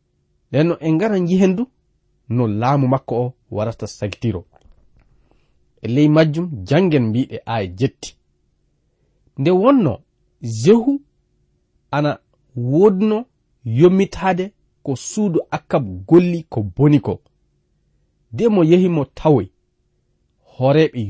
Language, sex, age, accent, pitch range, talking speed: English, male, 40-59, South African, 115-170 Hz, 80 wpm